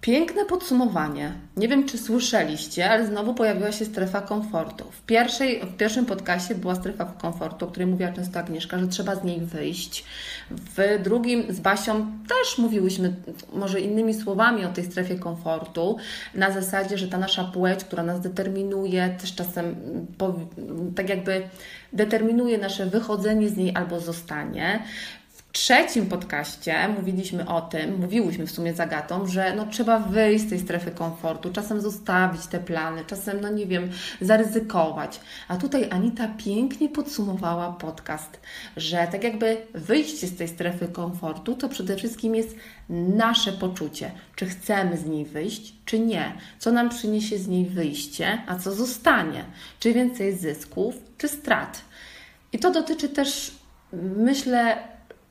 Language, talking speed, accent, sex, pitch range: Polish, 150 wpm, native, female, 175-225 Hz